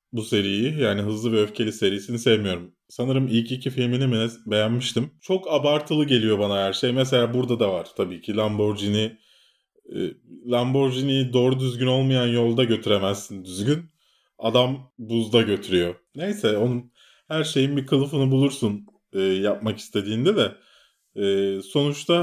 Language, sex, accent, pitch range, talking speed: Turkish, male, native, 105-140 Hz, 125 wpm